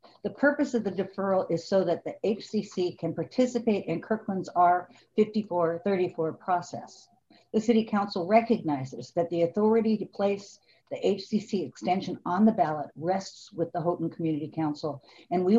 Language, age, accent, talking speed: English, 60-79, American, 150 wpm